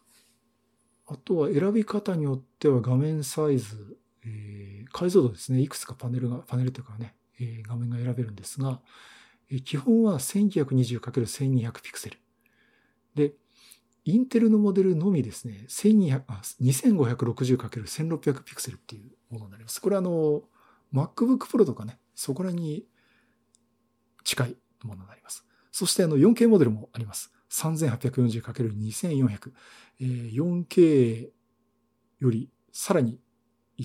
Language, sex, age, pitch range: Japanese, male, 50-69, 120-150 Hz